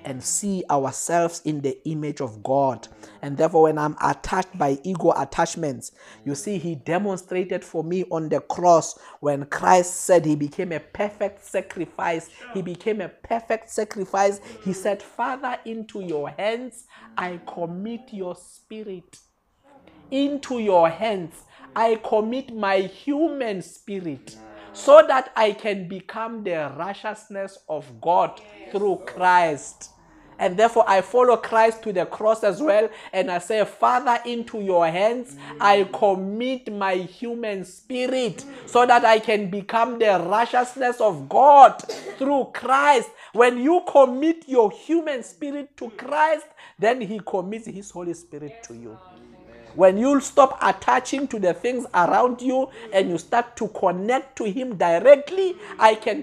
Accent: South African